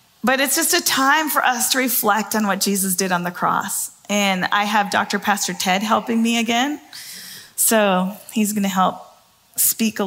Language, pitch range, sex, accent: English, 215-300 Hz, female, American